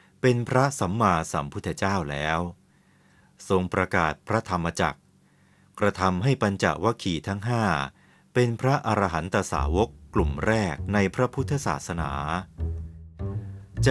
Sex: male